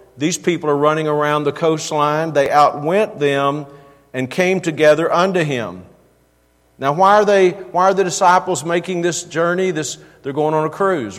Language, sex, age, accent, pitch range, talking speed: English, male, 50-69, American, 140-175 Hz, 170 wpm